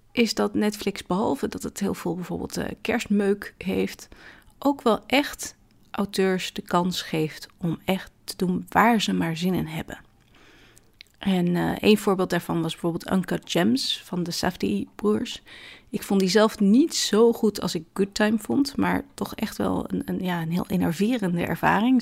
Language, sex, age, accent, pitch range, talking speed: Dutch, female, 30-49, Dutch, 170-215 Hz, 175 wpm